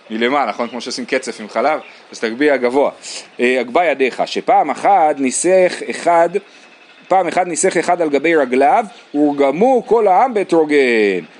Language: Hebrew